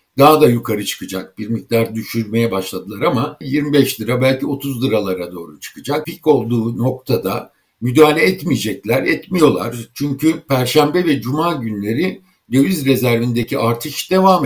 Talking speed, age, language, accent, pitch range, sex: 130 wpm, 60-79, Turkish, native, 115-145 Hz, male